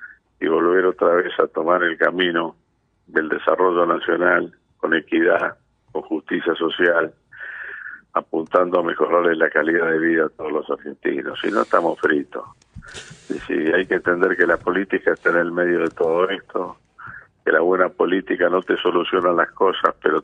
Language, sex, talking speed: Spanish, male, 165 wpm